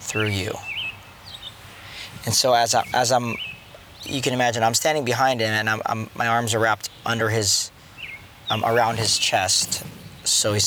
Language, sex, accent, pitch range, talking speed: English, male, American, 105-125 Hz, 170 wpm